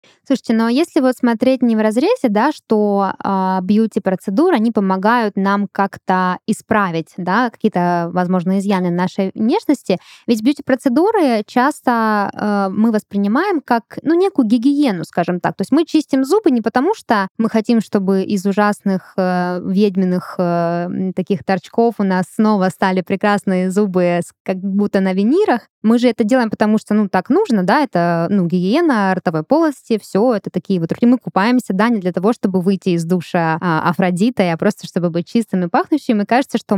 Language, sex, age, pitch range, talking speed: Russian, female, 20-39, 185-240 Hz, 170 wpm